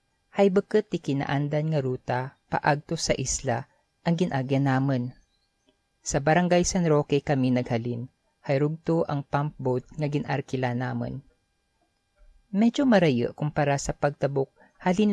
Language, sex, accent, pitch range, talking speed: Filipino, female, native, 130-170 Hz, 125 wpm